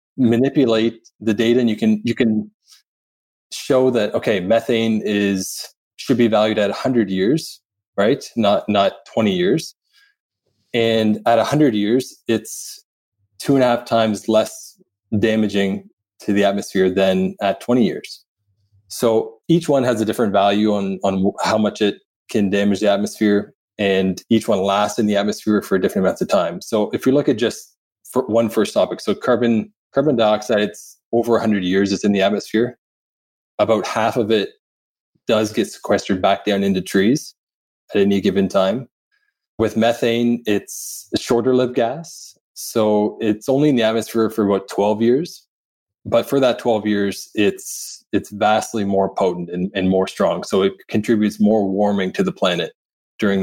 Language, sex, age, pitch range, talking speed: English, male, 20-39, 100-115 Hz, 165 wpm